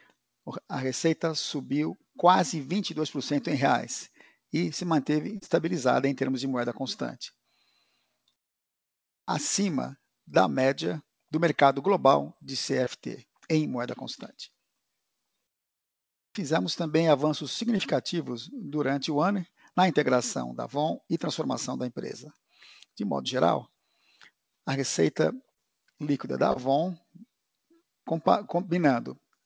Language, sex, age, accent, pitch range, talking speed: Portuguese, male, 50-69, Brazilian, 135-170 Hz, 105 wpm